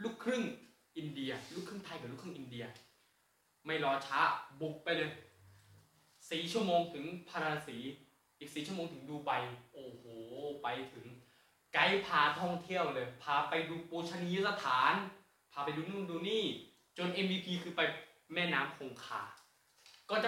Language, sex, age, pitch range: Thai, male, 20-39, 155-215 Hz